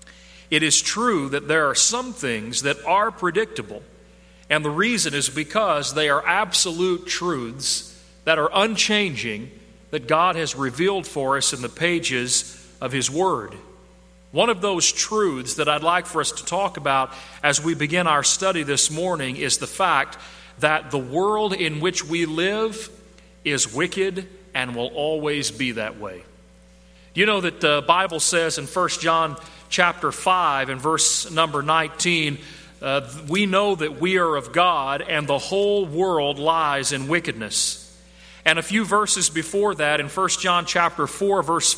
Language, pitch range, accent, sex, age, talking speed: English, 140-180 Hz, American, male, 40-59, 165 wpm